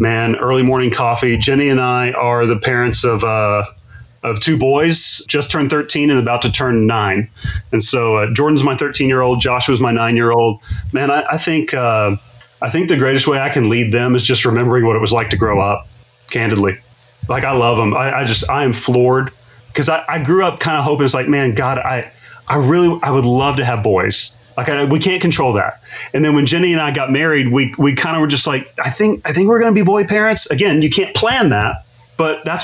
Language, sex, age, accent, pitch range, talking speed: English, male, 30-49, American, 115-140 Hz, 240 wpm